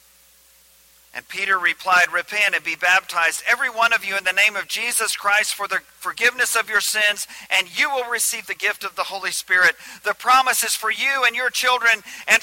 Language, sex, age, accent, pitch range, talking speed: English, male, 50-69, American, 190-250 Hz, 205 wpm